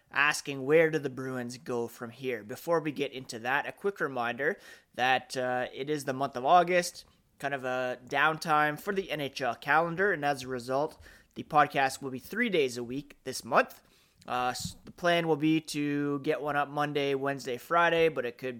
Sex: male